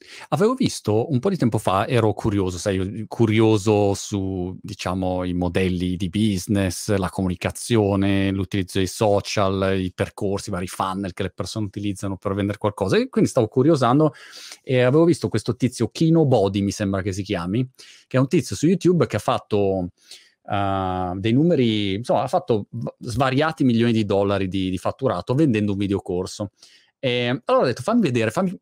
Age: 30-49